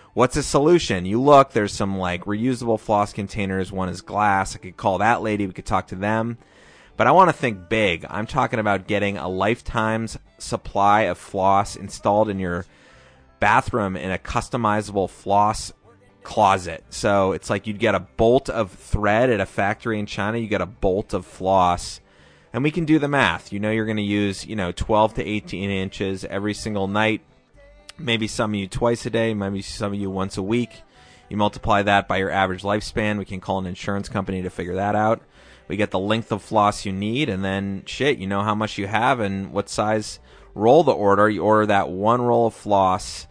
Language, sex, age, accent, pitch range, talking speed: English, male, 30-49, American, 95-115 Hz, 210 wpm